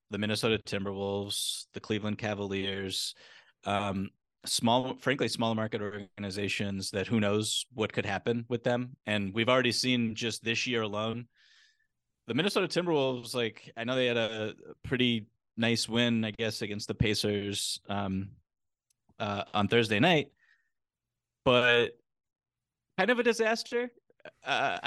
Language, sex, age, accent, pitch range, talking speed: English, male, 30-49, American, 105-120 Hz, 135 wpm